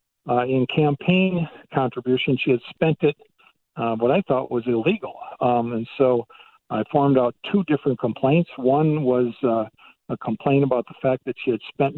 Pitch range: 120-145 Hz